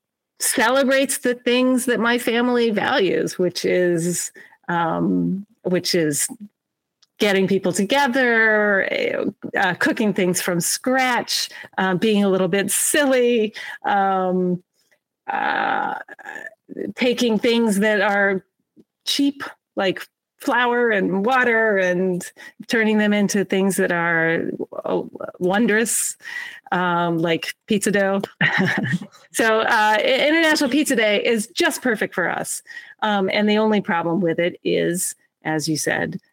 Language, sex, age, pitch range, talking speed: English, female, 40-59, 180-245 Hz, 120 wpm